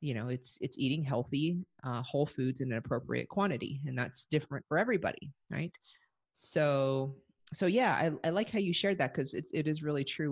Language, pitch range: English, 135-180 Hz